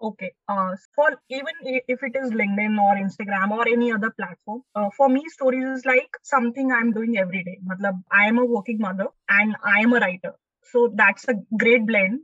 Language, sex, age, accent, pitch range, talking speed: Hindi, female, 20-39, native, 205-255 Hz, 60 wpm